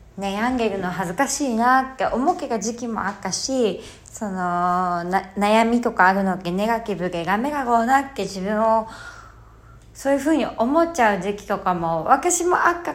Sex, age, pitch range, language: female, 20-39, 195-280 Hz, Japanese